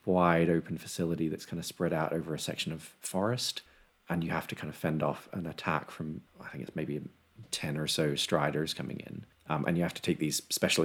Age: 30-49